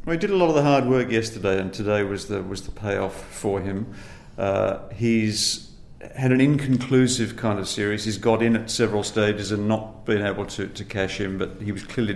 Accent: British